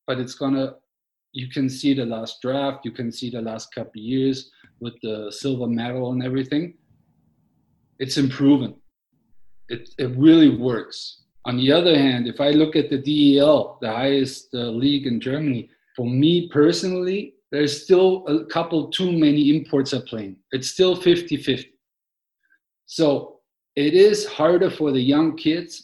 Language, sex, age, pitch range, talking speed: English, male, 50-69, 135-175 Hz, 165 wpm